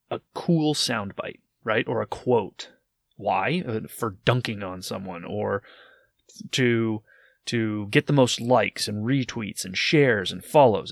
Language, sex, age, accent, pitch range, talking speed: English, male, 30-49, American, 105-130 Hz, 135 wpm